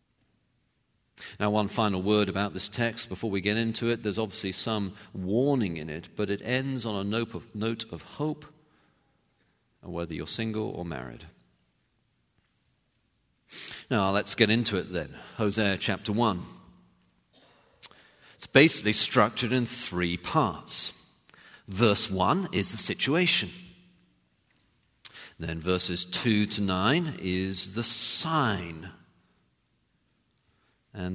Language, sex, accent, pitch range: English, male, British, 85-115 Hz